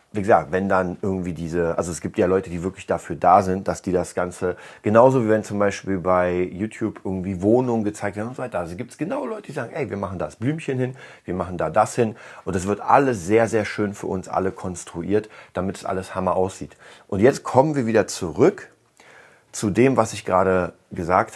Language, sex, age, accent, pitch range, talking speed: German, male, 40-59, German, 95-115 Hz, 225 wpm